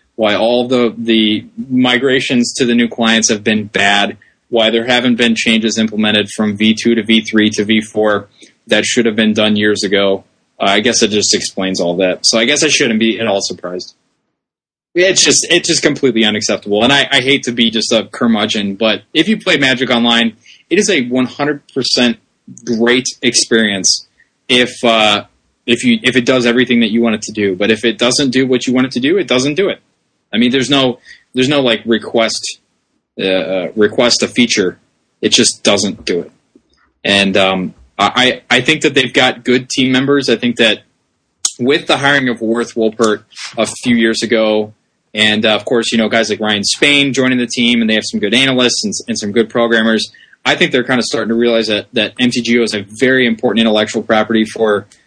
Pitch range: 110-125 Hz